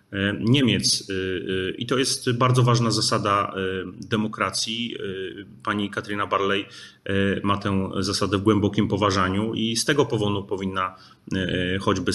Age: 30-49